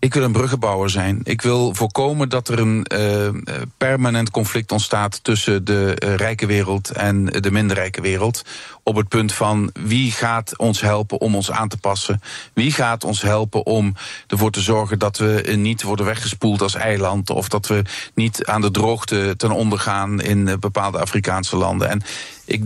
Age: 50-69